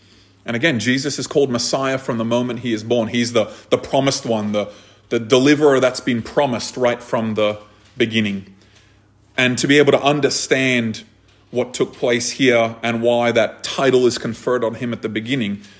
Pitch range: 110-135 Hz